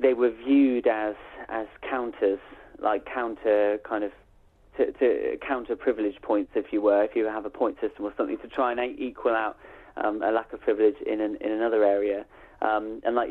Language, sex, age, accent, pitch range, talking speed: English, male, 20-39, British, 105-125 Hz, 195 wpm